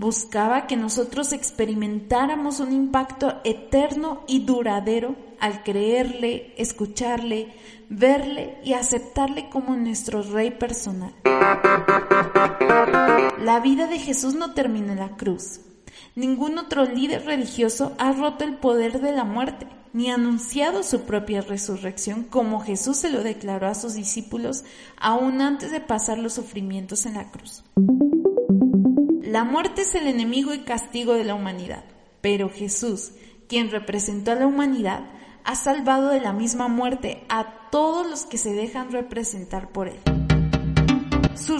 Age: 30-49